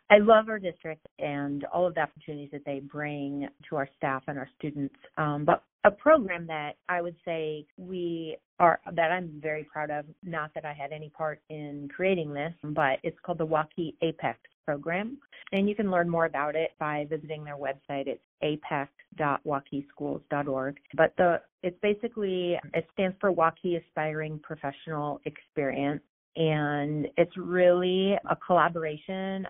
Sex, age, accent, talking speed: female, 30-49, American, 160 wpm